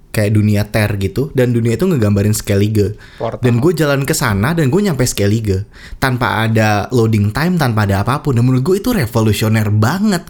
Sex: male